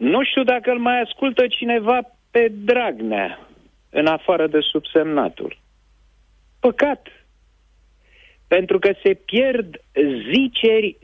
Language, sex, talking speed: Romanian, male, 105 wpm